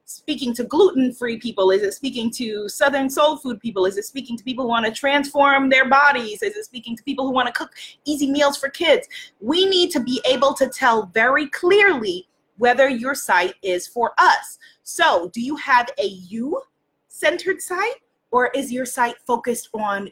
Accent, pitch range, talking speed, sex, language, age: American, 240-355 Hz, 190 wpm, female, English, 20-39